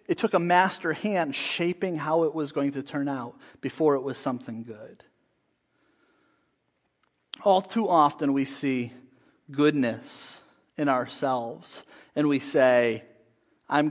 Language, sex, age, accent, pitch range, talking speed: English, male, 30-49, American, 140-180 Hz, 130 wpm